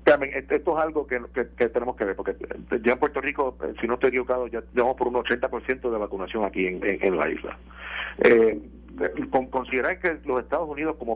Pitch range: 105-130 Hz